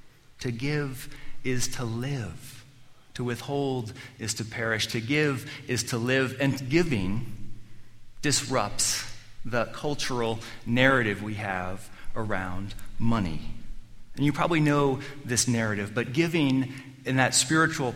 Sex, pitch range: male, 110-135 Hz